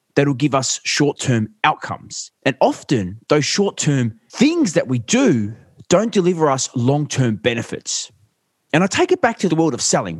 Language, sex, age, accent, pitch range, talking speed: English, male, 20-39, Australian, 120-165 Hz, 165 wpm